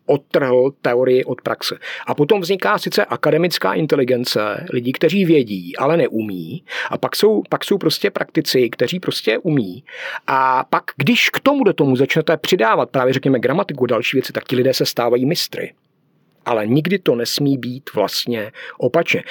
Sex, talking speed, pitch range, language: male, 160 wpm, 125-160 Hz, Czech